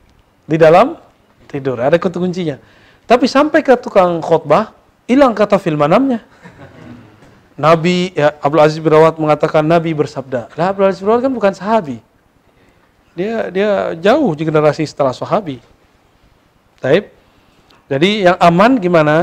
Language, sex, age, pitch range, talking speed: Indonesian, male, 40-59, 130-170 Hz, 125 wpm